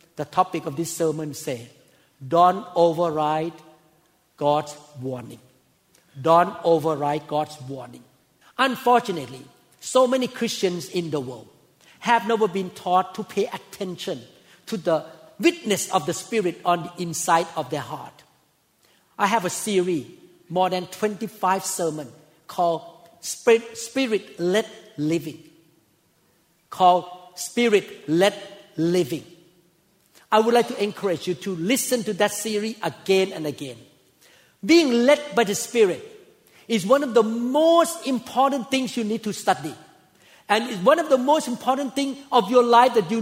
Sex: male